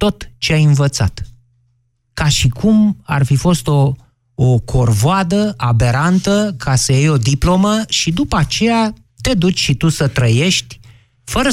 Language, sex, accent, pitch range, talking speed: Romanian, male, native, 120-155 Hz, 150 wpm